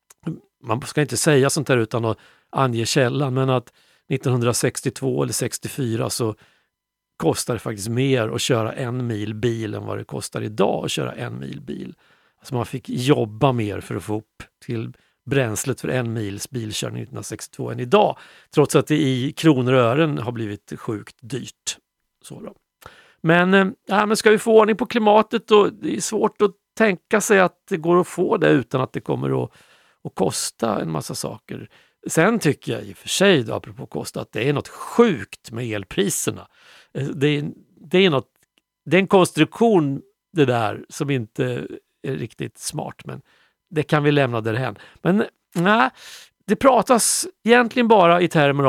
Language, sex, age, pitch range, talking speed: Swedish, male, 50-69, 120-195 Hz, 180 wpm